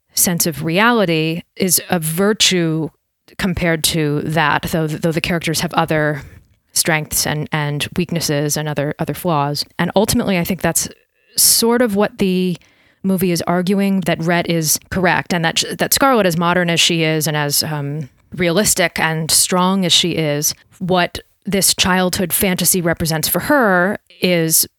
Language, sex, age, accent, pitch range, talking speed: English, female, 30-49, American, 155-180 Hz, 155 wpm